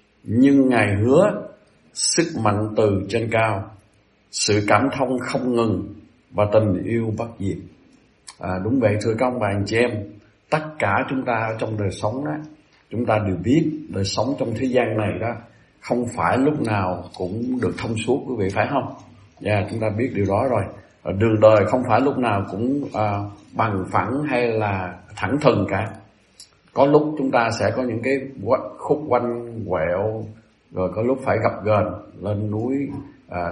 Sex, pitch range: male, 100-130 Hz